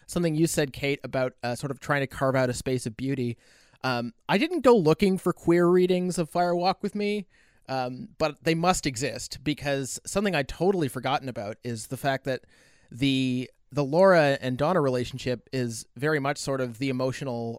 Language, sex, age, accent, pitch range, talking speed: English, male, 30-49, American, 125-155 Hz, 195 wpm